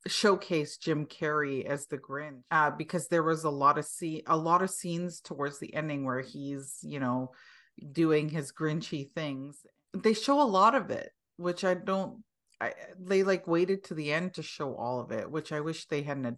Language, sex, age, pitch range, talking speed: English, female, 30-49, 140-195 Hz, 205 wpm